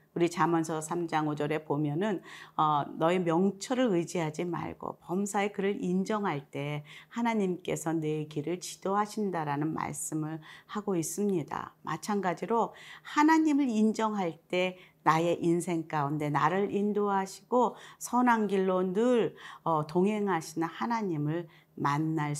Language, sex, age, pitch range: Korean, female, 40-59, 160-210 Hz